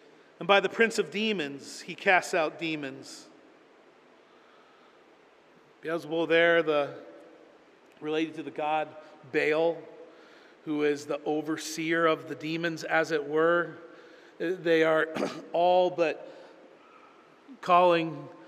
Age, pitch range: 40-59, 165-195 Hz